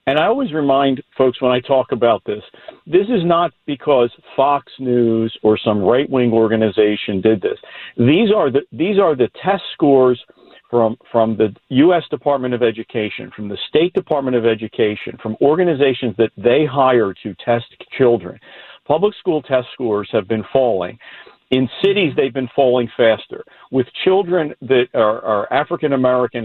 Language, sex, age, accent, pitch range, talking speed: English, male, 50-69, American, 120-155 Hz, 160 wpm